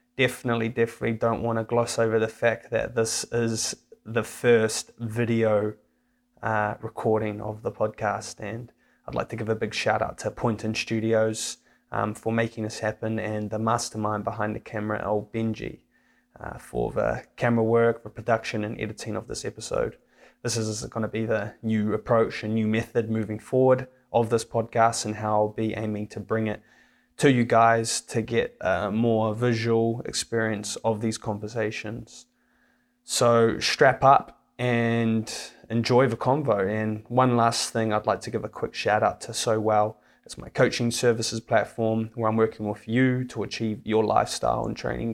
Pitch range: 110-120 Hz